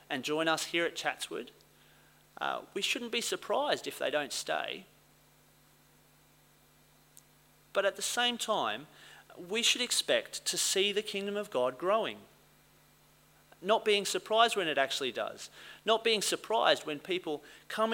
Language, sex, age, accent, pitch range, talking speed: English, male, 40-59, Australian, 145-210 Hz, 145 wpm